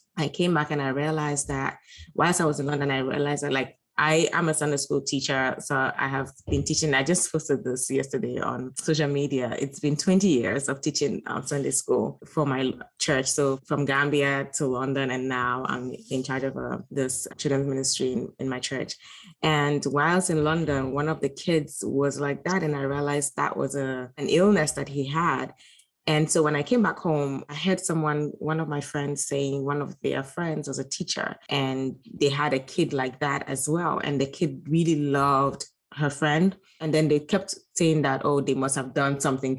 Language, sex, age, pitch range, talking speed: English, female, 20-39, 135-165 Hz, 210 wpm